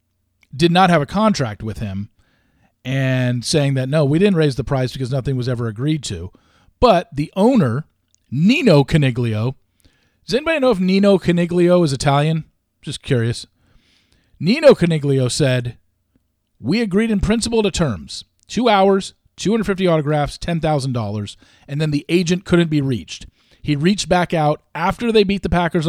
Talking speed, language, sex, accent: 155 wpm, English, male, American